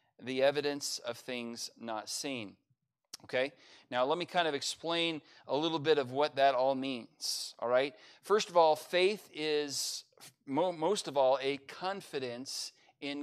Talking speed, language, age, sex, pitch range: 155 wpm, English, 40-59, male, 125-155 Hz